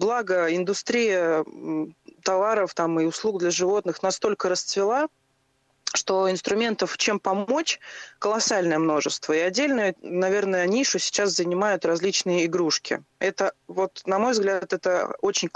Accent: native